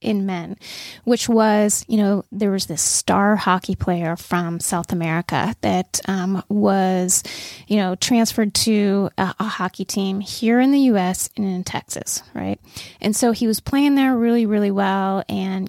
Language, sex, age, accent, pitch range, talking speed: English, female, 20-39, American, 190-225 Hz, 170 wpm